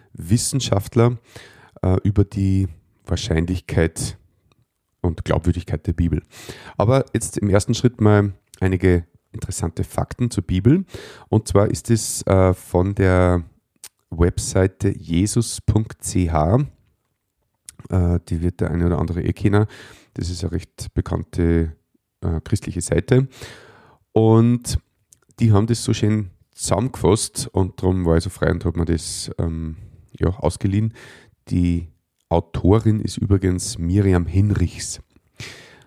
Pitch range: 90-115 Hz